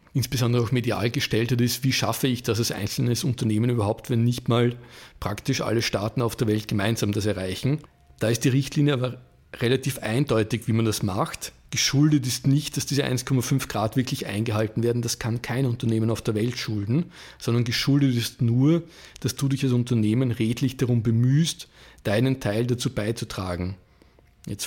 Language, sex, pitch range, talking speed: German, male, 110-135 Hz, 175 wpm